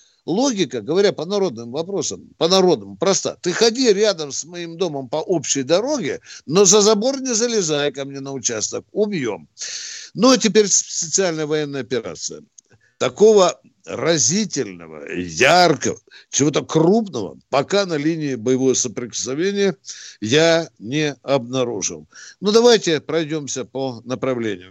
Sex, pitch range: male, 120-190 Hz